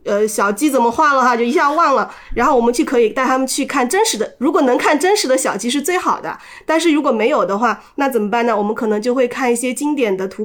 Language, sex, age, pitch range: Chinese, female, 20-39, 215-275 Hz